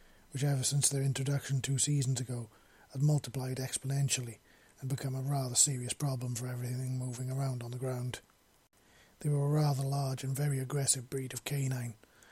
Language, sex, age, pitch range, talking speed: English, male, 30-49, 130-145 Hz, 170 wpm